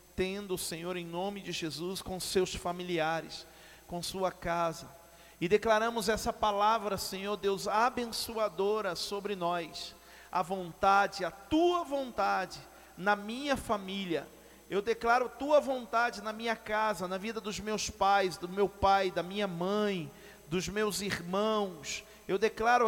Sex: male